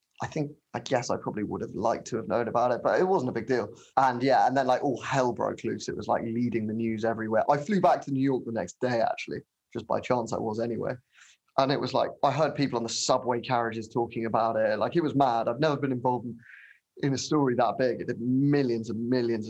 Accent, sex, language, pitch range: British, male, English, 115-145 Hz